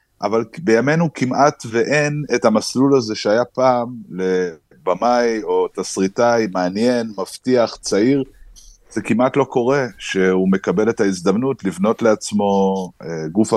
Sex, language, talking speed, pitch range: male, Hebrew, 115 wpm, 95-135 Hz